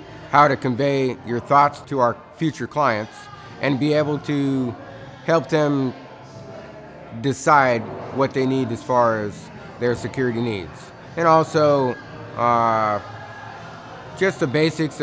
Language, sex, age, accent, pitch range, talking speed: English, male, 30-49, American, 120-150 Hz, 125 wpm